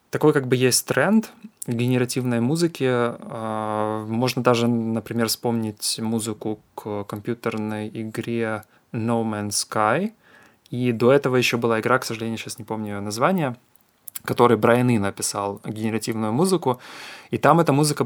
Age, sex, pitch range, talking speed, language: 20-39, male, 110-125 Hz, 135 wpm, Russian